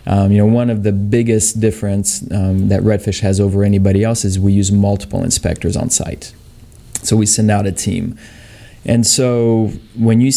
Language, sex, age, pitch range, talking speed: English, male, 20-39, 100-115 Hz, 185 wpm